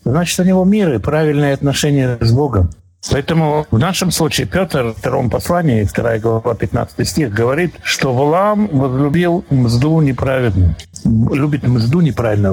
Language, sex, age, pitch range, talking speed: Russian, male, 60-79, 105-155 Hz, 145 wpm